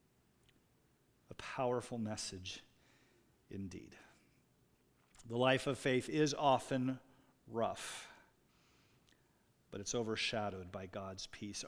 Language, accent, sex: English, American, male